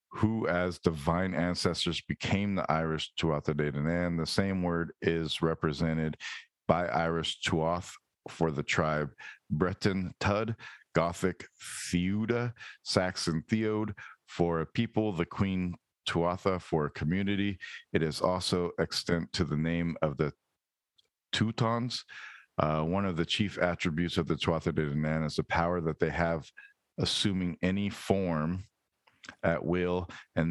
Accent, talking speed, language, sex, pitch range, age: American, 135 wpm, English, male, 80-95 Hz, 50-69